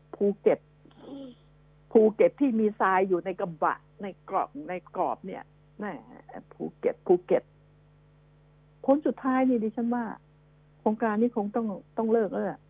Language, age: Thai, 60-79